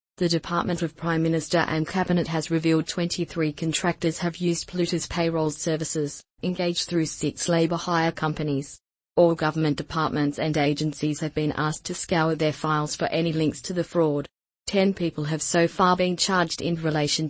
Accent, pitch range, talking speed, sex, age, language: Australian, 155-175 Hz, 170 wpm, female, 30-49, English